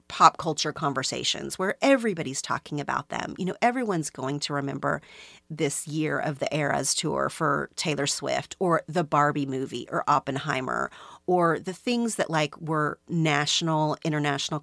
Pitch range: 150-195 Hz